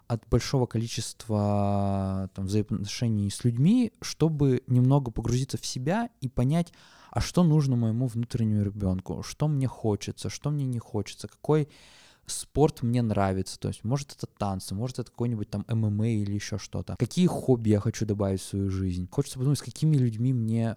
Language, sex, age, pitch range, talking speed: Russian, male, 20-39, 105-125 Hz, 165 wpm